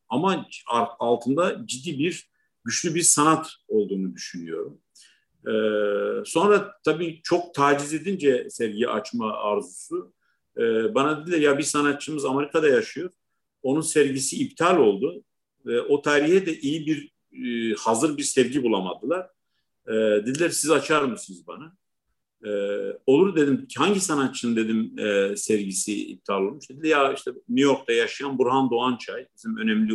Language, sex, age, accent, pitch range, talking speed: Turkish, male, 50-69, native, 120-185 Hz, 125 wpm